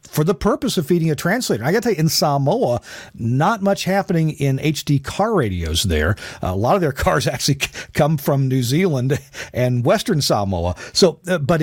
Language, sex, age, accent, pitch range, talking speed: English, male, 50-69, American, 115-160 Hz, 190 wpm